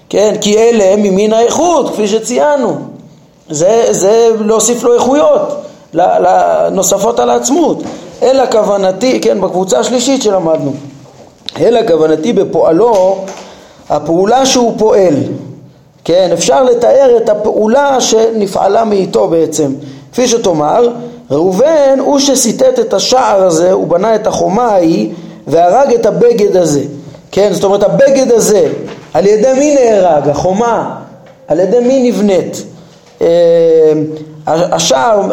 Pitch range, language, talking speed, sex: 190-260 Hz, Hebrew, 115 wpm, male